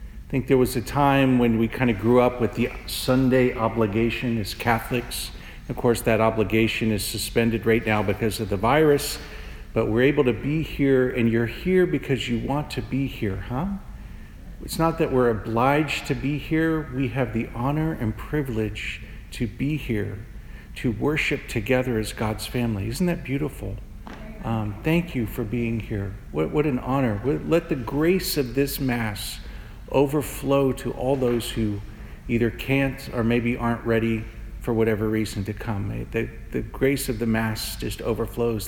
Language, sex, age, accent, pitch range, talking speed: English, male, 50-69, American, 110-135 Hz, 175 wpm